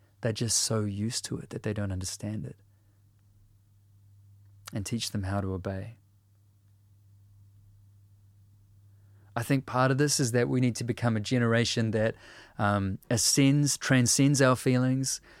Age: 30-49